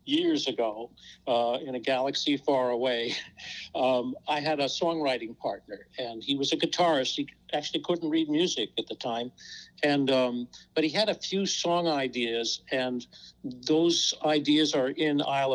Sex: male